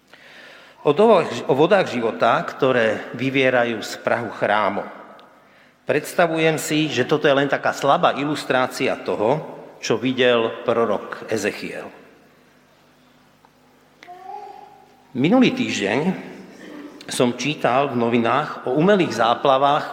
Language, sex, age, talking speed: Slovak, male, 50-69, 95 wpm